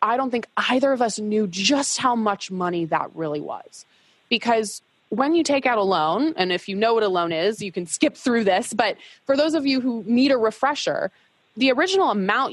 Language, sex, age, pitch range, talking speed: English, female, 20-39, 180-255 Hz, 220 wpm